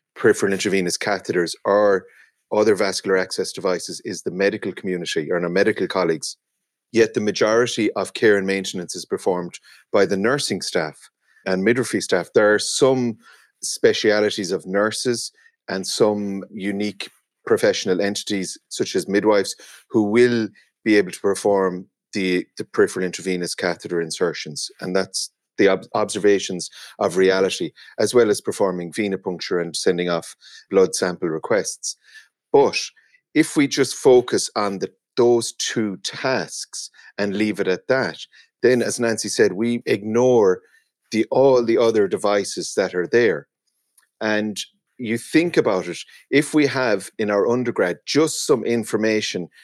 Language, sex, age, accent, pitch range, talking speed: English, male, 30-49, Irish, 95-125 Hz, 140 wpm